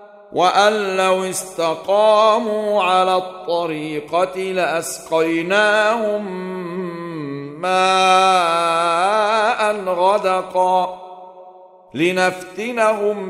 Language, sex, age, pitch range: Arabic, male, 50-69, 185-210 Hz